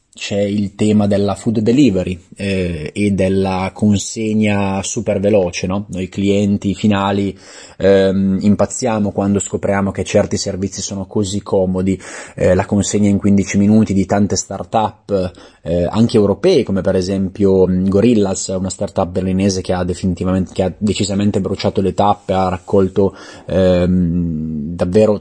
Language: Italian